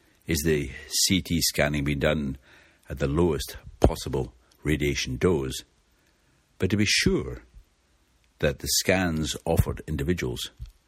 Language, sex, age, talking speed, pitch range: English, male, 60-79, 115 wpm, 70-80 Hz